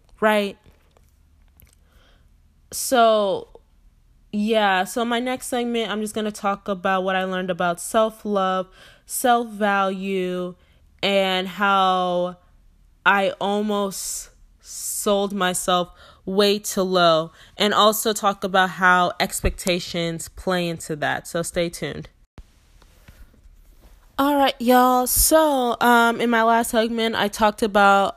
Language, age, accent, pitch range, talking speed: English, 20-39, American, 175-210 Hz, 110 wpm